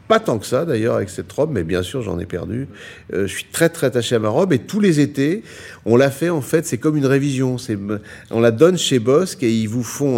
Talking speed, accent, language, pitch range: 270 wpm, French, French, 110-140 Hz